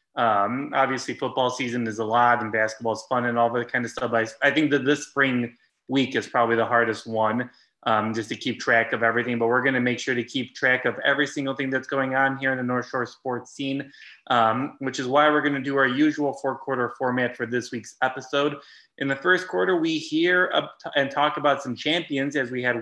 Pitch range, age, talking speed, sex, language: 120-140 Hz, 20-39, 235 wpm, male, English